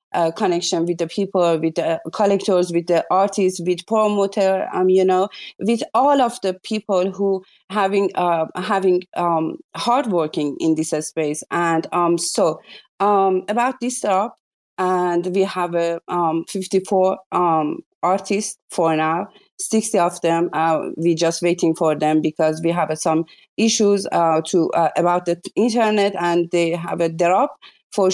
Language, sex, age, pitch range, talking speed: English, female, 30-49, 170-210 Hz, 165 wpm